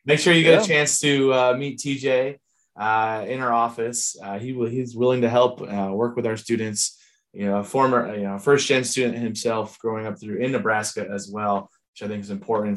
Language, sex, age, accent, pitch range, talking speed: English, male, 20-39, American, 110-150 Hz, 220 wpm